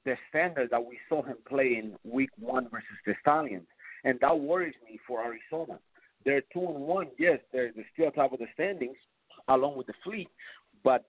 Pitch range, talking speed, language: 120-150 Hz, 190 wpm, English